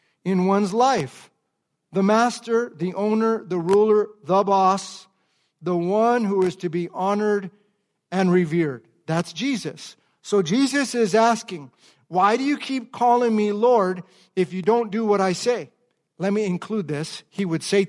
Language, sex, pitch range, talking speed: English, male, 185-235 Hz, 160 wpm